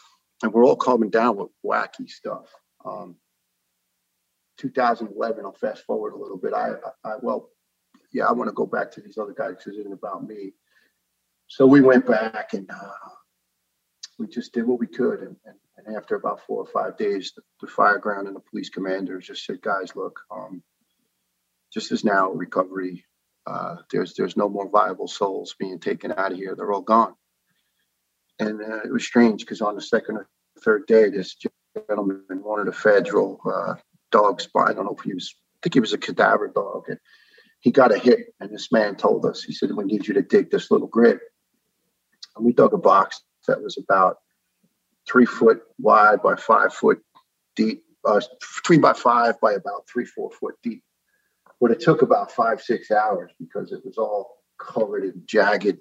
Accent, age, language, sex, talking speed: American, 40-59, English, male, 195 wpm